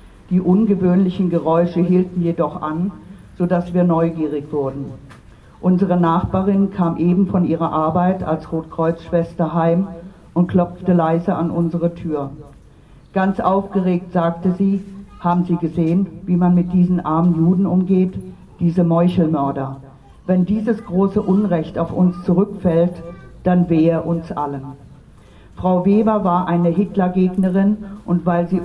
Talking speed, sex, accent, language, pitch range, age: 130 wpm, female, German, German, 165-185 Hz, 50-69